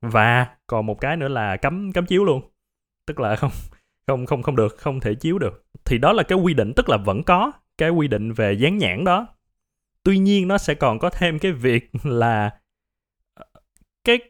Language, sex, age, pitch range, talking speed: Vietnamese, male, 20-39, 110-170 Hz, 205 wpm